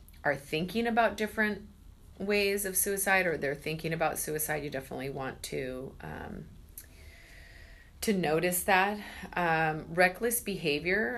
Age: 30-49